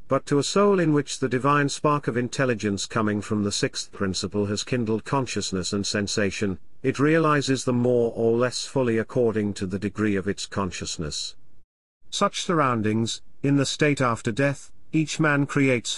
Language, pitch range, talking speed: English, 105-140 Hz, 170 wpm